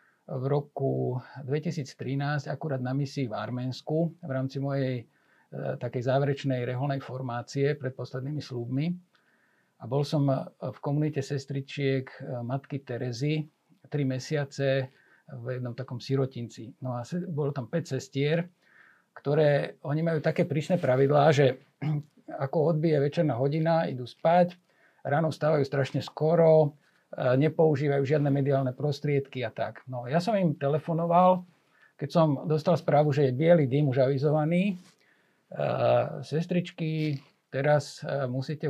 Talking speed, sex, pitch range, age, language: 125 wpm, male, 135-165 Hz, 50-69, Slovak